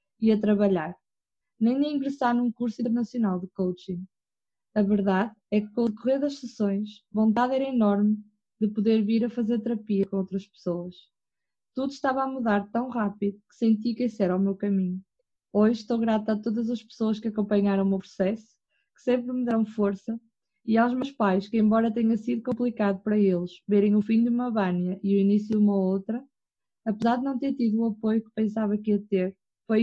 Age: 20-39